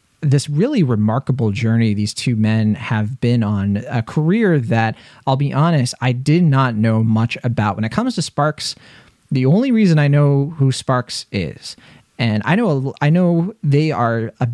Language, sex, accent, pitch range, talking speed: English, male, American, 110-150 Hz, 180 wpm